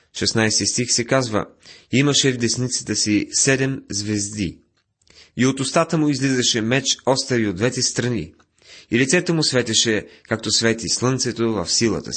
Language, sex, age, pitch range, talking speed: Bulgarian, male, 30-49, 100-130 Hz, 150 wpm